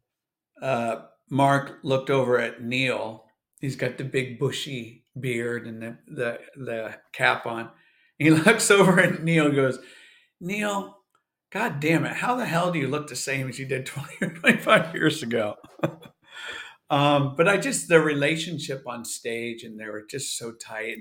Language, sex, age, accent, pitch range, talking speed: English, male, 50-69, American, 120-170 Hz, 170 wpm